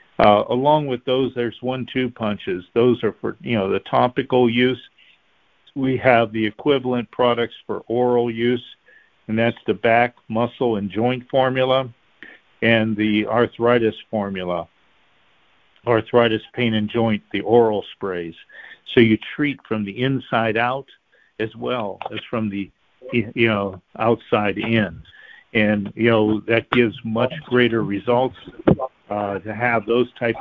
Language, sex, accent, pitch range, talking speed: English, male, American, 110-125 Hz, 140 wpm